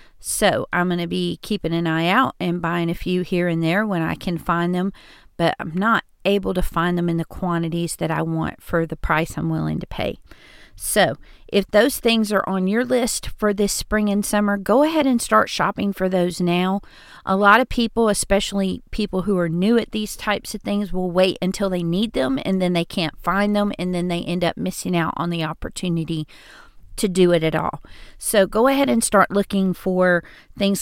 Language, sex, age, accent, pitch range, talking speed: English, female, 40-59, American, 175-215 Hz, 215 wpm